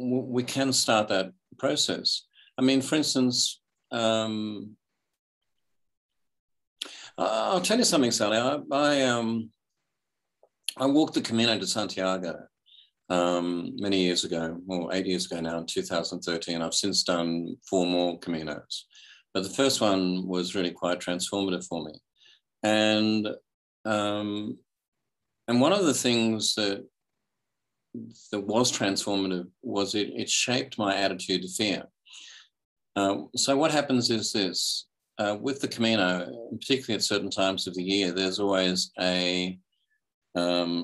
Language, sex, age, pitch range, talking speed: English, male, 50-69, 90-110 Hz, 135 wpm